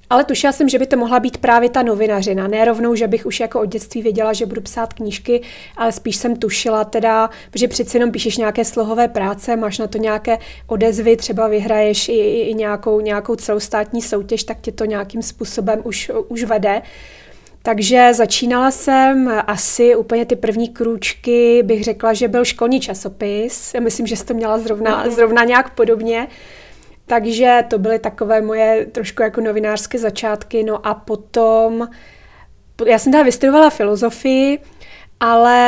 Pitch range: 220-240 Hz